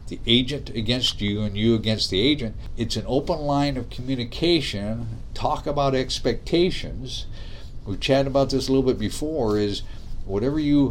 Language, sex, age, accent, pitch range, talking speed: English, male, 50-69, American, 110-140 Hz, 160 wpm